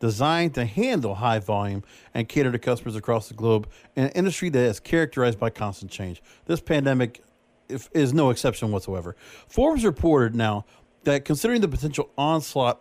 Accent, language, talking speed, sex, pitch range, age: American, English, 165 wpm, male, 120-155 Hz, 50-69